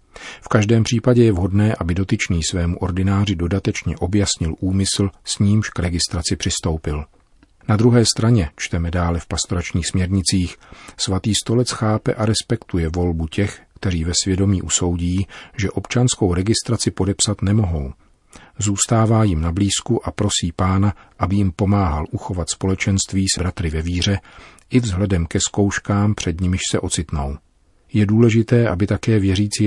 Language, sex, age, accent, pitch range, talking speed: Czech, male, 40-59, native, 85-105 Hz, 140 wpm